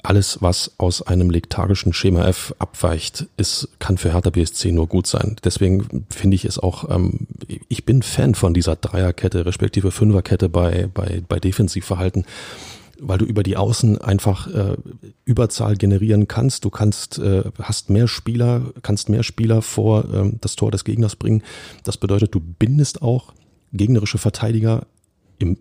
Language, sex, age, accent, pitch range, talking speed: German, male, 40-59, German, 95-115 Hz, 160 wpm